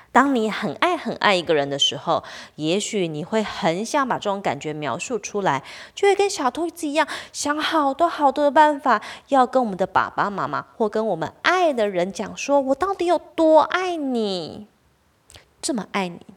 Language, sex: Chinese, female